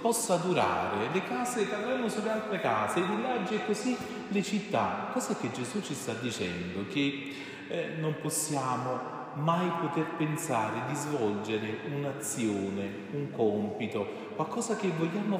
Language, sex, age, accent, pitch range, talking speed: Italian, male, 40-59, native, 145-215 Hz, 135 wpm